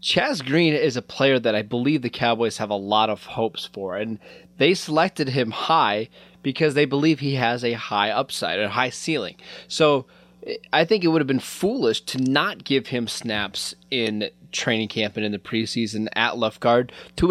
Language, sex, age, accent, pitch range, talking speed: English, male, 20-39, American, 115-165 Hz, 195 wpm